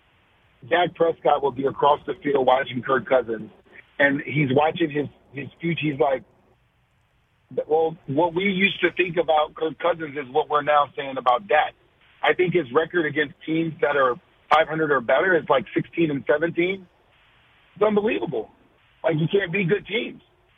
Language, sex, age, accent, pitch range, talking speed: English, male, 40-59, American, 135-170 Hz, 170 wpm